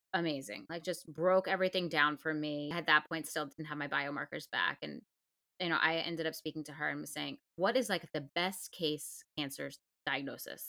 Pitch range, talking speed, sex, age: 150-195 Hz, 210 wpm, female, 20-39